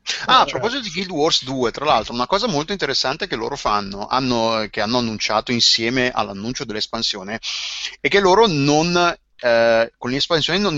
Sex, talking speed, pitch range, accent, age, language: male, 175 wpm, 115-135 Hz, native, 30-49, Italian